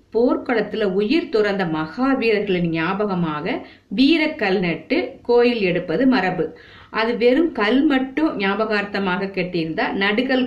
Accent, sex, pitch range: native, female, 175-250 Hz